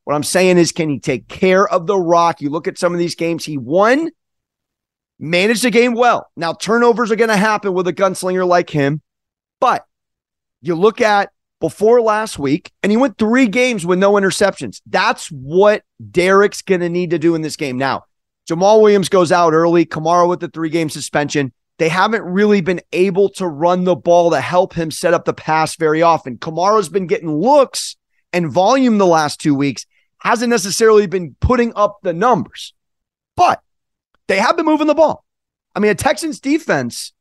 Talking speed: 190 wpm